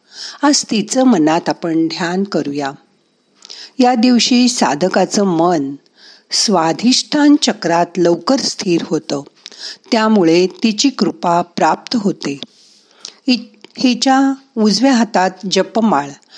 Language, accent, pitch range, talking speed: Marathi, native, 180-255 Hz, 90 wpm